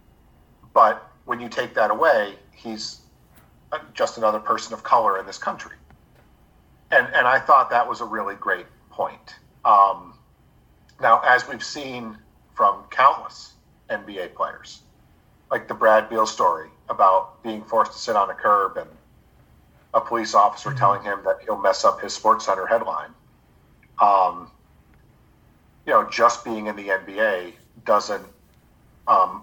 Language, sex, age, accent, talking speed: English, male, 40-59, American, 140 wpm